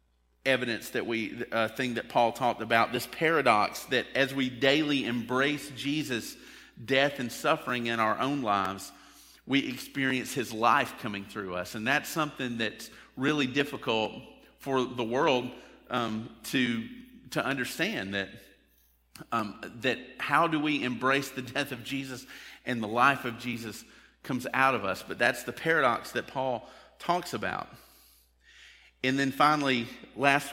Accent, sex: American, male